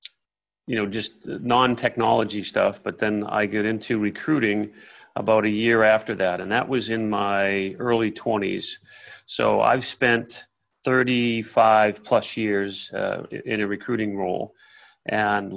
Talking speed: 135 wpm